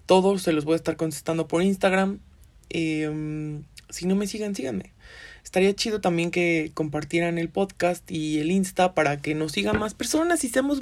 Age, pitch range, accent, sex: 20-39, 155-200 Hz, Mexican, male